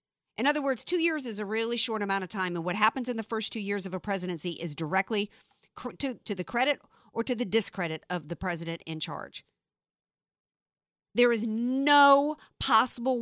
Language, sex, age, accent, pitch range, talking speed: English, female, 50-69, American, 185-265 Hz, 190 wpm